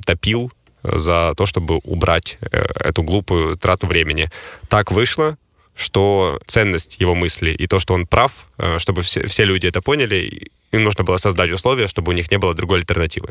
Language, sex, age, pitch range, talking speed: Ukrainian, male, 20-39, 85-100 Hz, 180 wpm